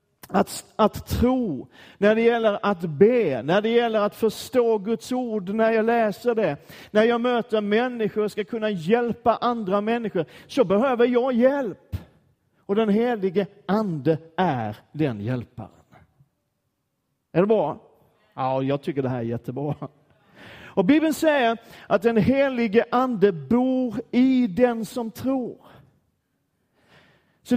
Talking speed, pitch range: 135 wpm, 175-240 Hz